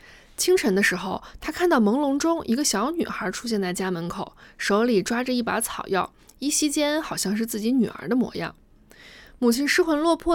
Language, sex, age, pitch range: Chinese, female, 20-39, 195-260 Hz